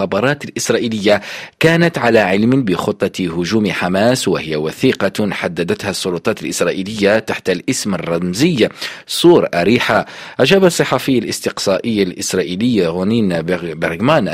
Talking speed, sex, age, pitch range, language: 95 wpm, male, 40-59, 90-125 Hz, Arabic